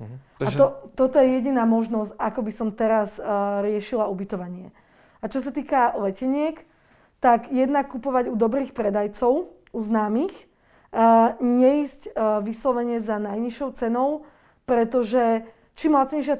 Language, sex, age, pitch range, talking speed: Slovak, female, 20-39, 225-255 Hz, 130 wpm